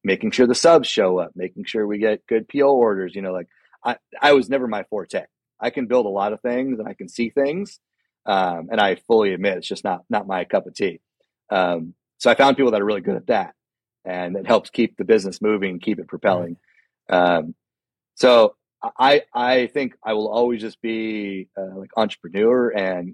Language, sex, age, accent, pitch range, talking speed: English, male, 30-49, American, 95-115 Hz, 215 wpm